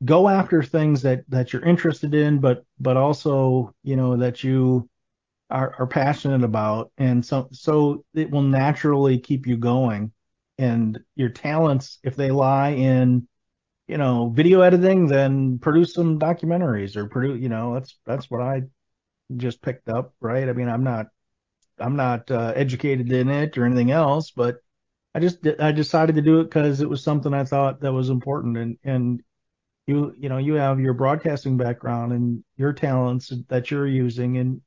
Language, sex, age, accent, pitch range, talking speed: English, male, 40-59, American, 125-150 Hz, 175 wpm